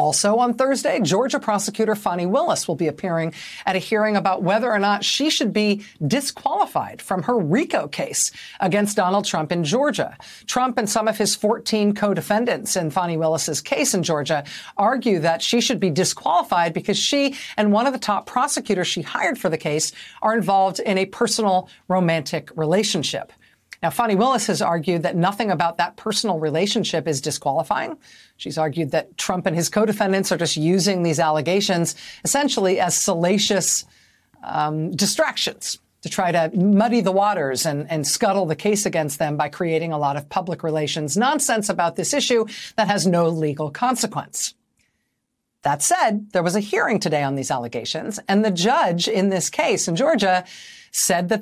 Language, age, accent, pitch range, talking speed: English, 50-69, American, 165-215 Hz, 175 wpm